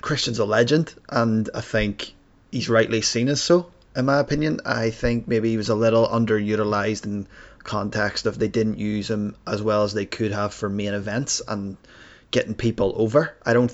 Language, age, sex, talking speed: English, 20-39, male, 190 wpm